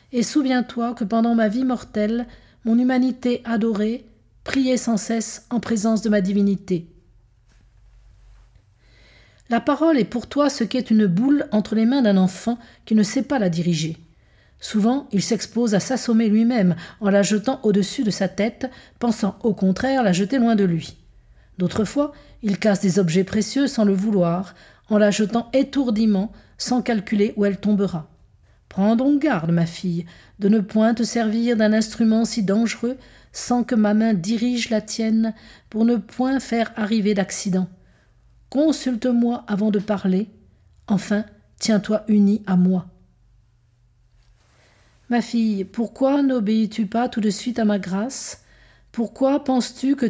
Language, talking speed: French, 155 wpm